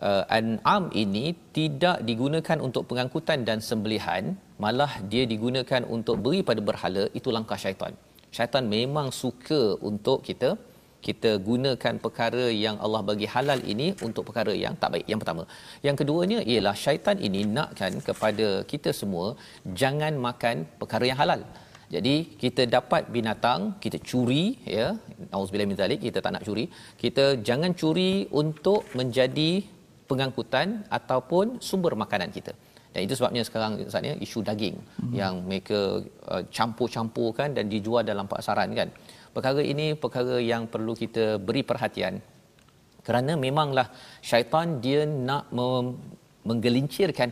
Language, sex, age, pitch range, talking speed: Malayalam, male, 40-59, 110-150 Hz, 140 wpm